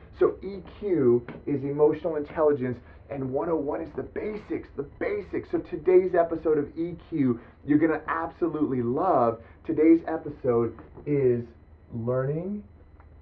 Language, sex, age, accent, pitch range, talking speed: English, male, 30-49, American, 115-155 Hz, 120 wpm